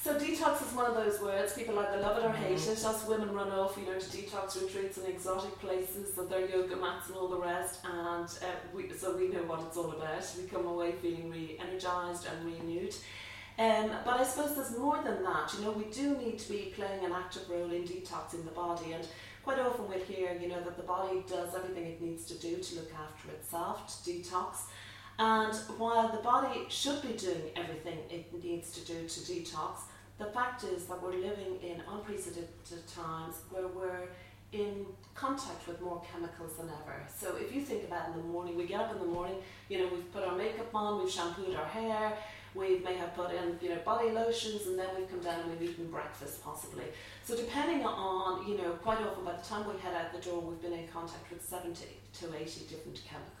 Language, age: English, 40-59